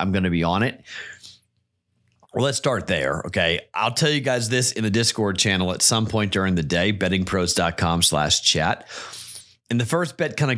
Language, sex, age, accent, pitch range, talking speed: English, male, 30-49, American, 100-130 Hz, 200 wpm